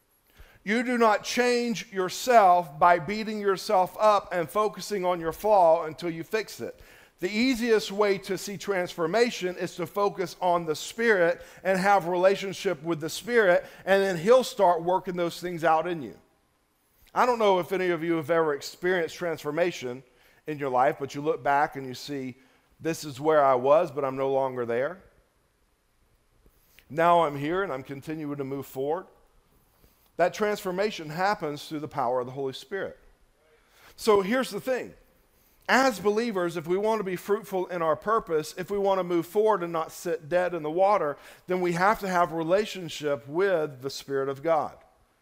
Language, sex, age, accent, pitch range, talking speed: English, male, 50-69, American, 155-200 Hz, 180 wpm